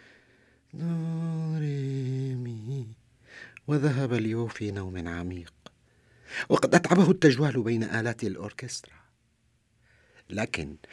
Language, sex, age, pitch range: French, male, 50-69, 120-185 Hz